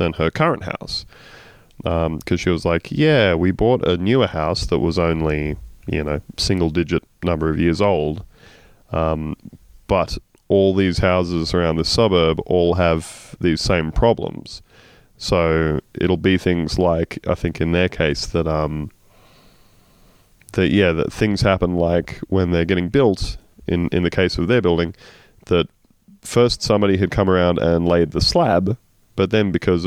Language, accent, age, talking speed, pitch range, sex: English, Australian, 30-49, 160 wpm, 85-100 Hz, male